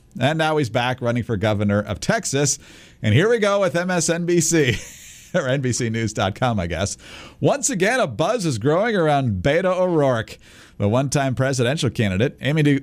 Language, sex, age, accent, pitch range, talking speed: English, male, 50-69, American, 115-165 Hz, 155 wpm